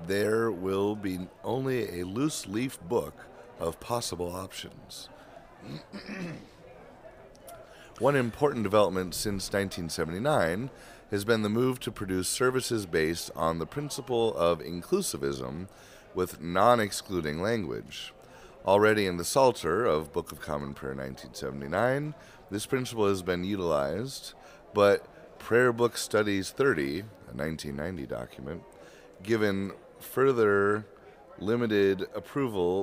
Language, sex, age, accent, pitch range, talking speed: English, male, 30-49, American, 85-115 Hz, 105 wpm